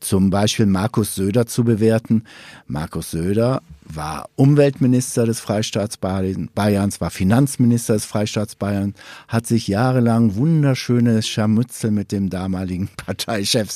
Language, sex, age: German, male, 50-69